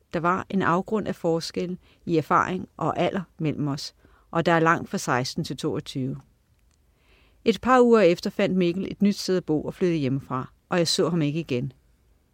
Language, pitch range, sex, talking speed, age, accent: Danish, 145-195 Hz, female, 195 wpm, 50-69, native